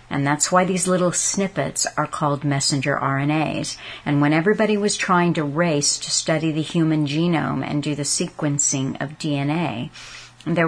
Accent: American